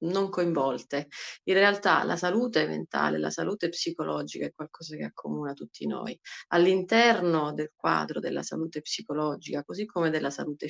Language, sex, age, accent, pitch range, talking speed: Italian, female, 30-49, native, 145-180 Hz, 145 wpm